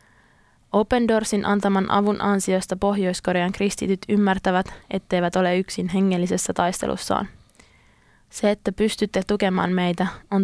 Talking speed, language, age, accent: 110 wpm, Finnish, 20-39, native